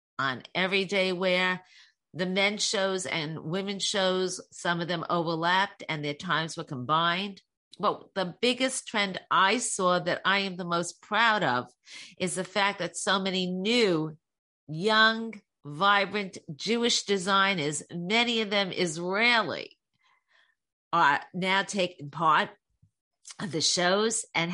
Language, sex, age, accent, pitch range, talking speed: English, female, 50-69, American, 160-200 Hz, 130 wpm